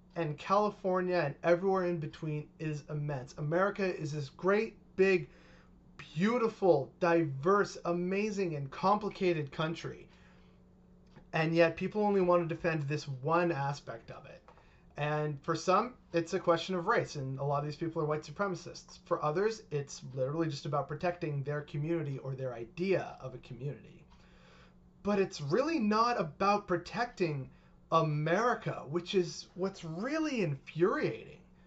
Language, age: English, 30-49